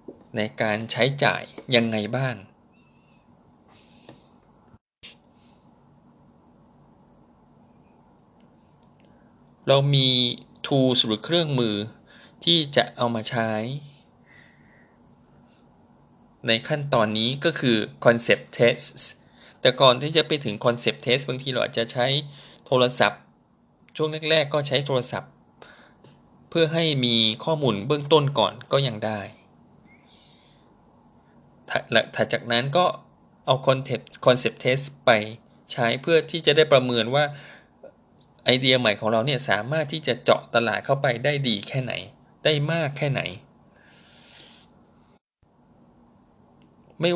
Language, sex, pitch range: Thai, male, 115-145 Hz